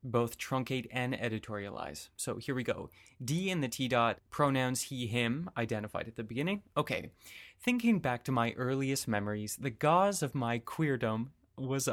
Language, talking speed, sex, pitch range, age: English, 165 wpm, male, 115-145 Hz, 20-39